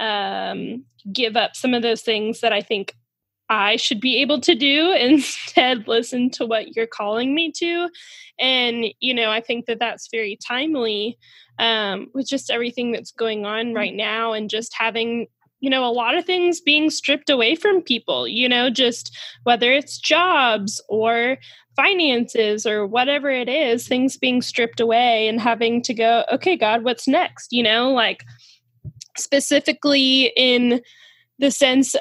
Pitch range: 225-270 Hz